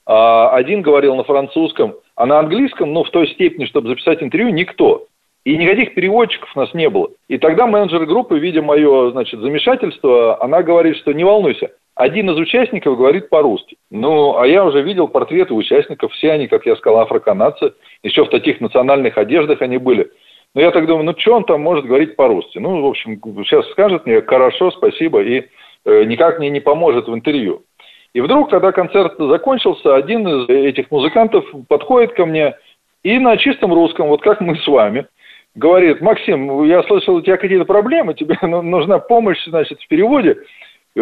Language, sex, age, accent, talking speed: Russian, male, 40-59, native, 180 wpm